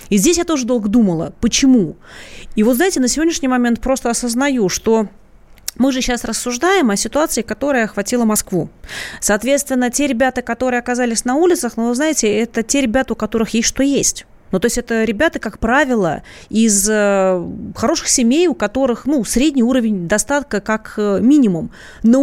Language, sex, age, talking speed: Russian, female, 30-49, 165 wpm